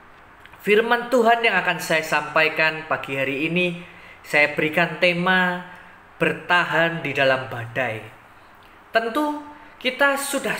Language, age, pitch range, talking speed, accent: Indonesian, 20-39, 155-250 Hz, 110 wpm, native